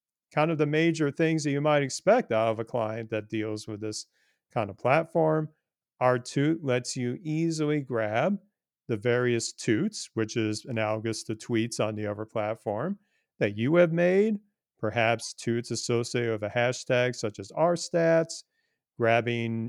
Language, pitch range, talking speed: English, 115-150 Hz, 155 wpm